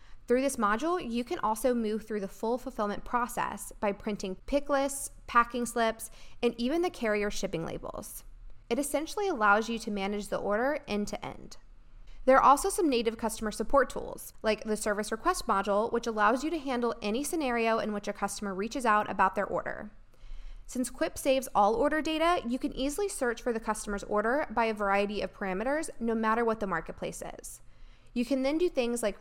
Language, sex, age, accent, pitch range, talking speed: English, female, 10-29, American, 205-270 Hz, 190 wpm